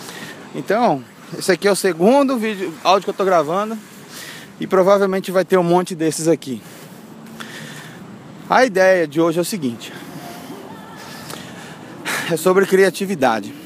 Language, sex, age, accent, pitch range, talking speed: Portuguese, male, 20-39, Brazilian, 175-225 Hz, 130 wpm